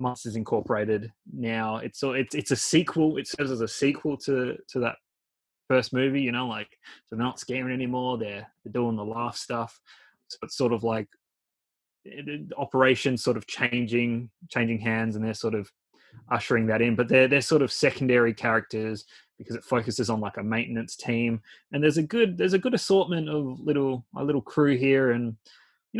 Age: 20-39